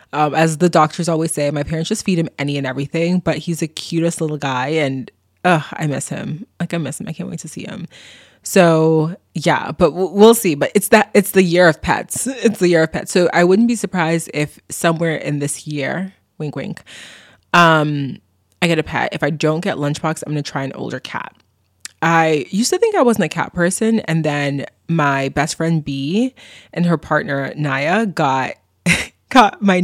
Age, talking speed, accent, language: 20-39, 210 wpm, American, English